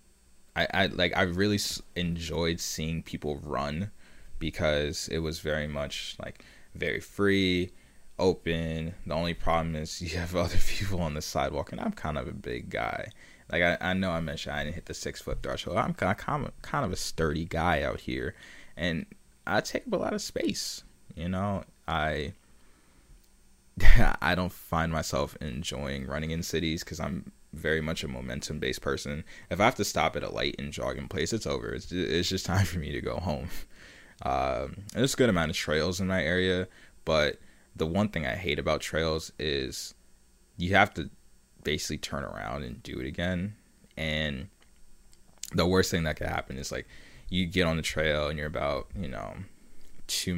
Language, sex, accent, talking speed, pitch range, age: English, male, American, 185 wpm, 75-90 Hz, 20-39